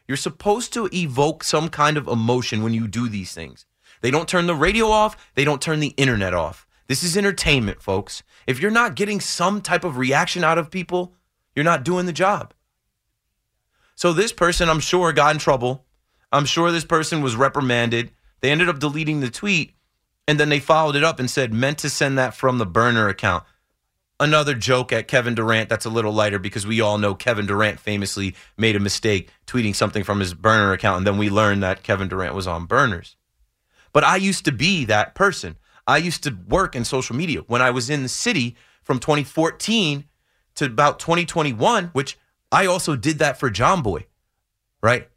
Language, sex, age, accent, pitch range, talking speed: English, male, 30-49, American, 110-160 Hz, 200 wpm